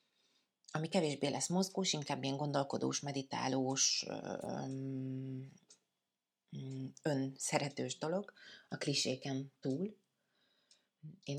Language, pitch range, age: Hungarian, 135-165 Hz, 30-49